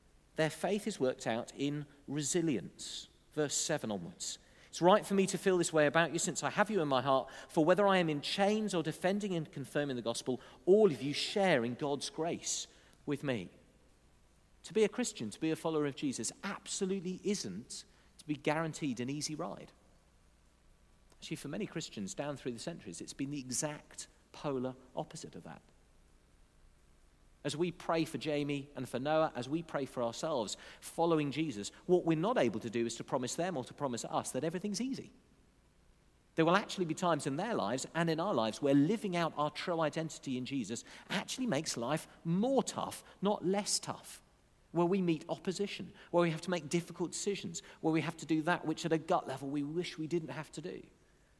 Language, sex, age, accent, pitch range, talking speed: English, male, 40-59, British, 135-180 Hz, 200 wpm